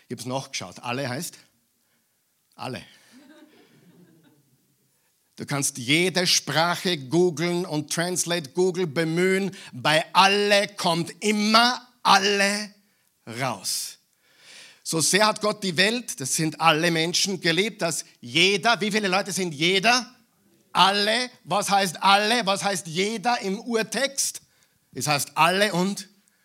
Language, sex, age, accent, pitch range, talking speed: German, male, 50-69, German, 155-210 Hz, 120 wpm